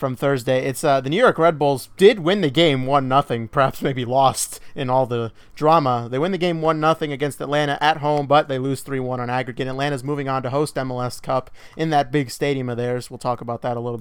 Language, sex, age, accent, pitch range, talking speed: English, male, 30-49, American, 130-170 Hz, 250 wpm